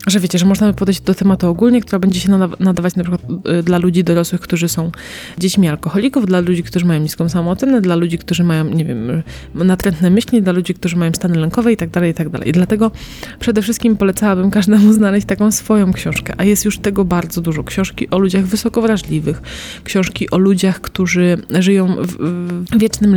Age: 20-39